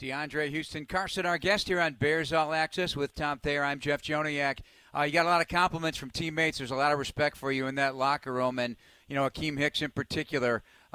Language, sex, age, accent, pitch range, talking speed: English, male, 40-59, American, 130-160 Hz, 240 wpm